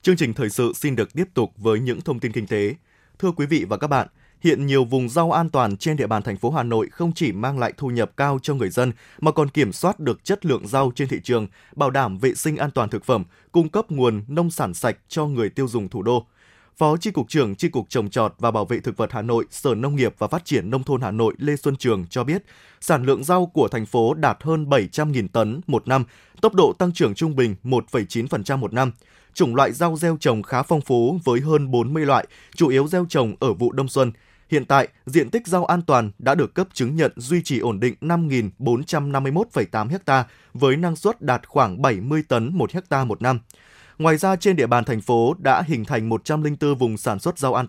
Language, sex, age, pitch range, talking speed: Vietnamese, male, 20-39, 120-155 Hz, 240 wpm